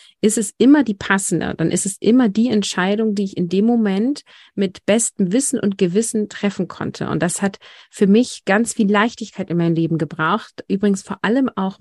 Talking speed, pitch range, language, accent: 200 wpm, 175-215 Hz, German, German